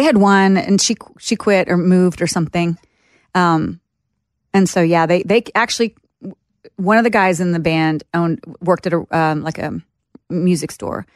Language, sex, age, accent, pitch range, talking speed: English, female, 30-49, American, 165-190 Hz, 175 wpm